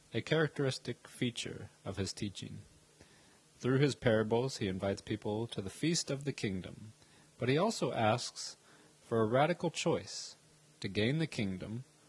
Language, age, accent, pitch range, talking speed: English, 30-49, American, 105-135 Hz, 150 wpm